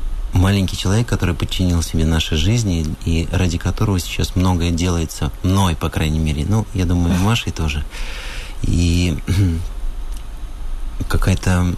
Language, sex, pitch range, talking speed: Russian, male, 85-105 Hz, 120 wpm